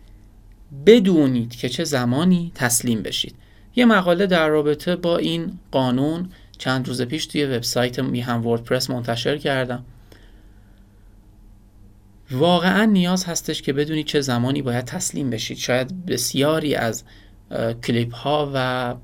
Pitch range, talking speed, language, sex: 120-150 Hz, 120 wpm, Persian, male